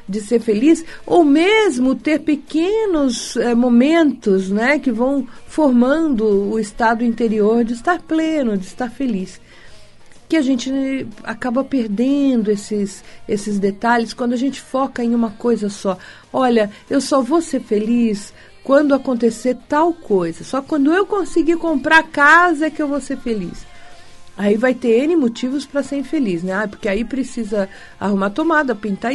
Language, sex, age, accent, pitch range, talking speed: Portuguese, female, 50-69, Brazilian, 210-285 Hz, 155 wpm